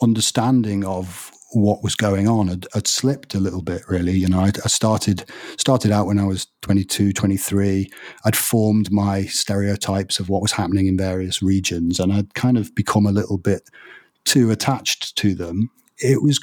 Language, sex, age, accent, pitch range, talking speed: English, male, 40-59, British, 95-110 Hz, 175 wpm